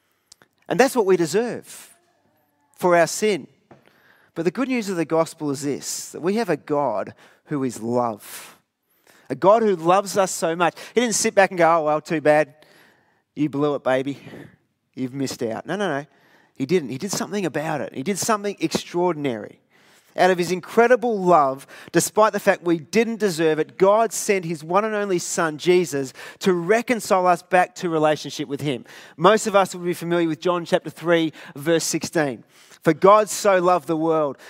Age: 30-49